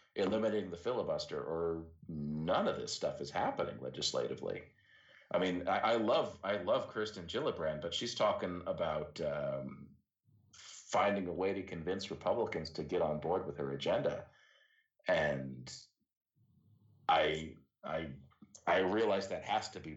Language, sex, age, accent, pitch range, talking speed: English, male, 50-69, American, 75-105 Hz, 140 wpm